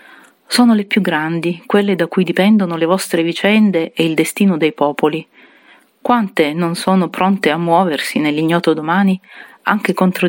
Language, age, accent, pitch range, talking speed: Italian, 40-59, native, 165-205 Hz, 150 wpm